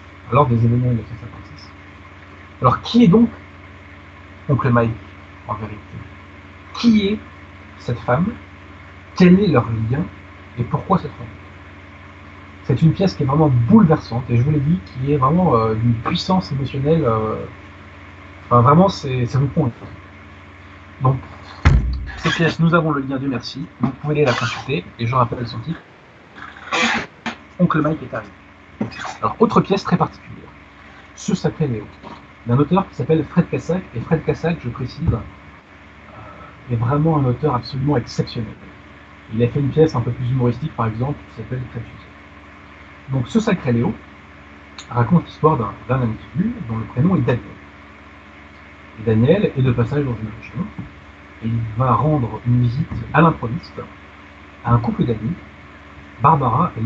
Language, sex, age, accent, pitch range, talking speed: French, male, 40-59, French, 95-145 Hz, 155 wpm